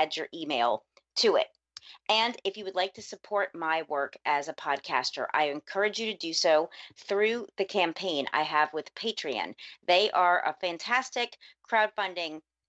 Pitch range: 175-220 Hz